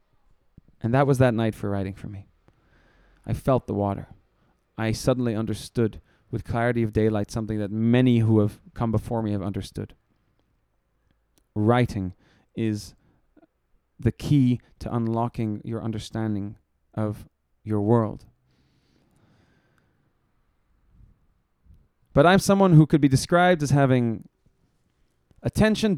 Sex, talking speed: male, 120 wpm